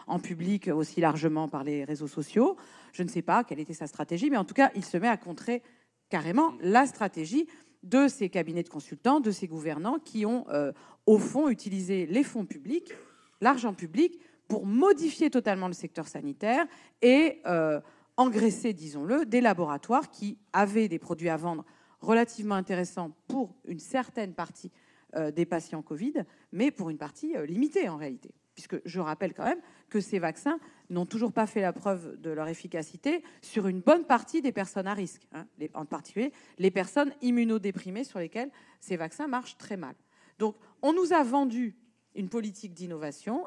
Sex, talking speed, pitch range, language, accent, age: female, 180 wpm, 170-255 Hz, French, French, 40-59